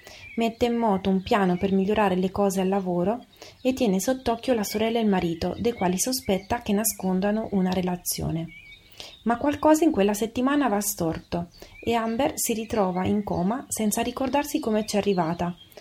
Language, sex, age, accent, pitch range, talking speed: Italian, female, 30-49, native, 185-235 Hz, 170 wpm